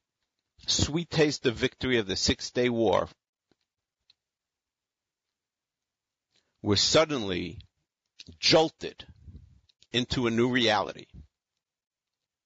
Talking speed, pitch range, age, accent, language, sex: 70 wpm, 100-130 Hz, 50-69, American, English, male